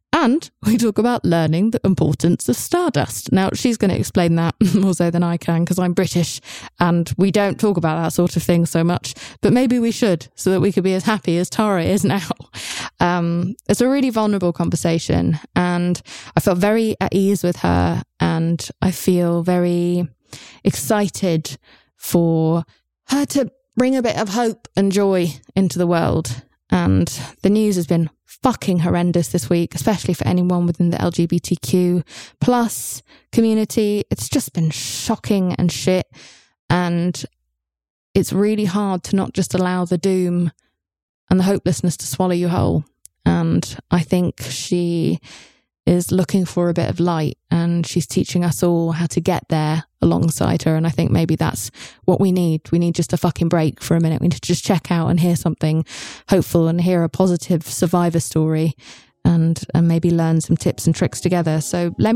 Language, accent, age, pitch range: English, British, 20-39, 165-190 Hz